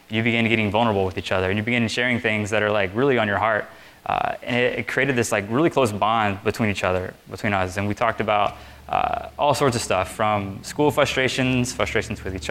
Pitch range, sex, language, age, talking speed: 105-125 Hz, male, English, 20-39, 235 wpm